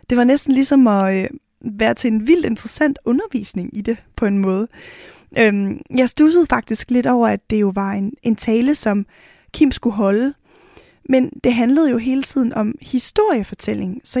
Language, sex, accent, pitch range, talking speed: Danish, female, native, 225-270 Hz, 180 wpm